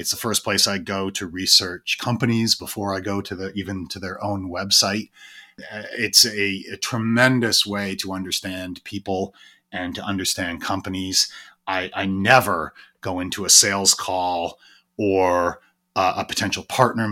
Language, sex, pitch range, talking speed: English, male, 95-115 Hz, 155 wpm